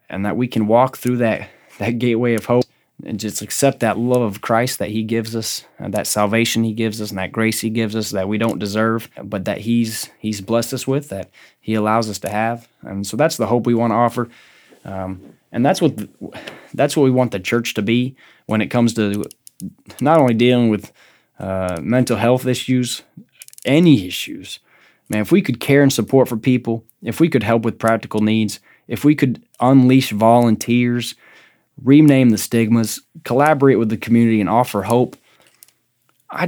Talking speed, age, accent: 195 wpm, 20-39, American